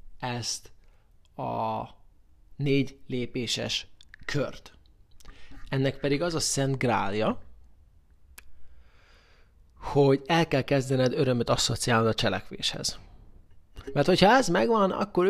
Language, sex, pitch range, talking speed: Hungarian, male, 95-140 Hz, 95 wpm